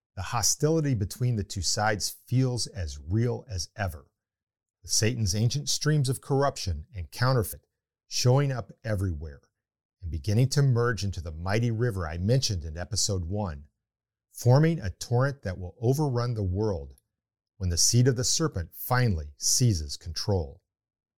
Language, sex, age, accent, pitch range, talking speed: English, male, 50-69, American, 95-125 Hz, 145 wpm